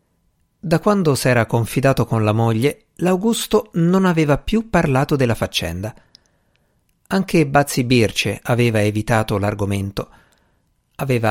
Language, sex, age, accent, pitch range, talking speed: Italian, male, 50-69, native, 110-160 Hz, 110 wpm